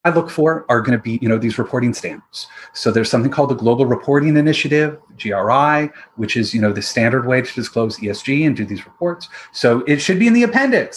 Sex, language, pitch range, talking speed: male, English, 120-150 Hz, 230 wpm